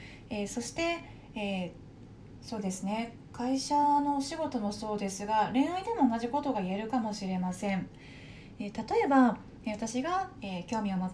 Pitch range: 200-280 Hz